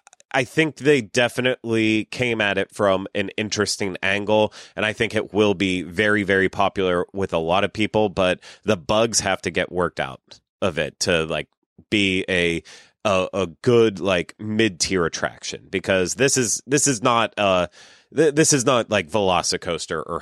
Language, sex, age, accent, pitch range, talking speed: English, male, 30-49, American, 95-120 Hz, 175 wpm